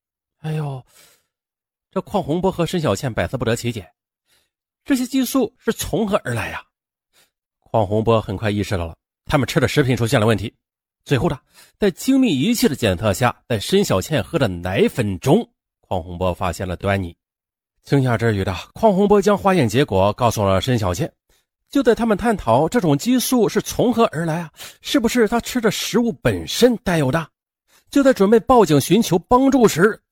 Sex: male